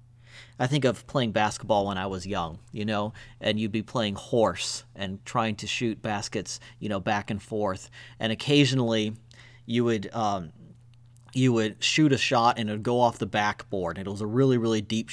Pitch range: 105-120 Hz